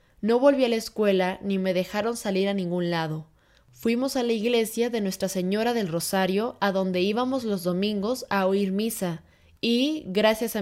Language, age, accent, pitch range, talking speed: Spanish, 20-39, Mexican, 185-230 Hz, 180 wpm